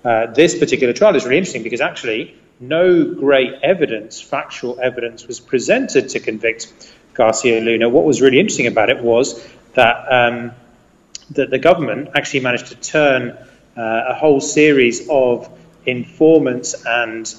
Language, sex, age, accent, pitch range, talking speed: English, male, 30-49, British, 115-140 Hz, 150 wpm